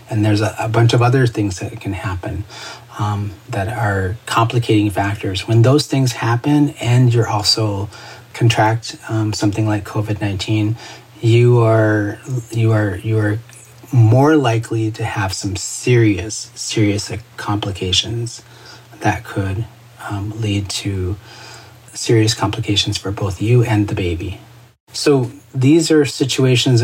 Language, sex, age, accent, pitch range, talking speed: English, male, 30-49, American, 105-120 Hz, 130 wpm